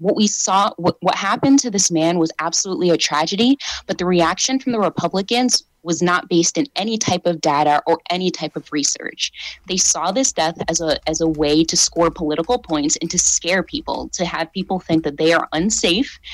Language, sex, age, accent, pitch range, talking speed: English, female, 20-39, American, 160-205 Hz, 205 wpm